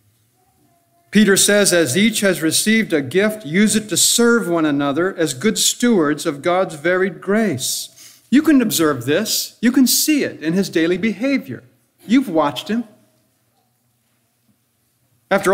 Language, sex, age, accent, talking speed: English, male, 60-79, American, 145 wpm